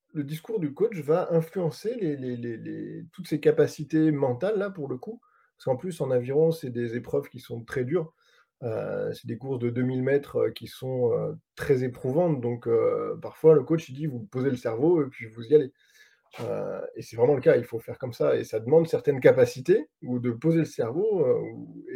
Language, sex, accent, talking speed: French, male, French, 220 wpm